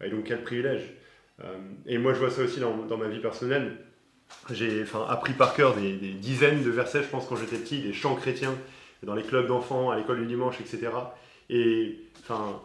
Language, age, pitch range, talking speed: French, 20-39, 120-150 Hz, 205 wpm